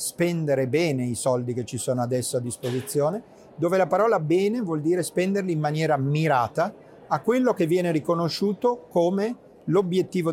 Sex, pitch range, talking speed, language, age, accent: male, 135-175 Hz, 155 wpm, Italian, 40-59, native